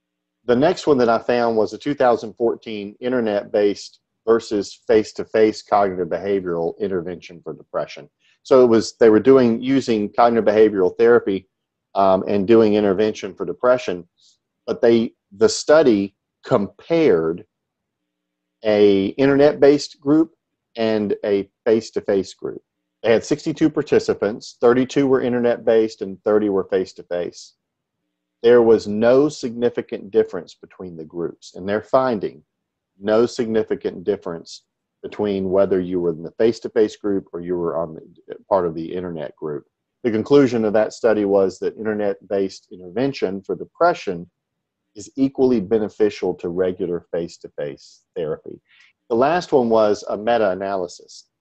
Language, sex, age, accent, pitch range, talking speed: English, male, 40-59, American, 95-125 Hz, 130 wpm